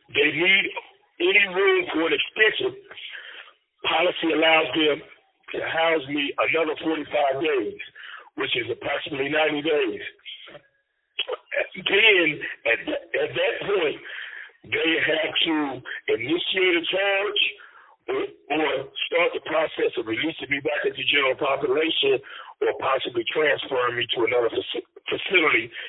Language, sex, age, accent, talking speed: English, male, 60-79, American, 125 wpm